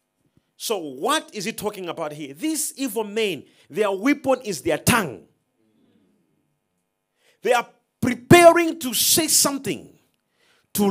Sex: male